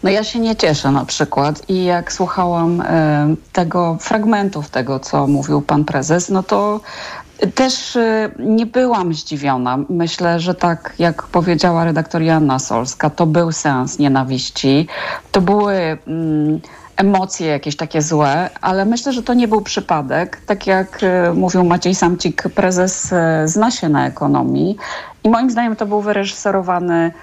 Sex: female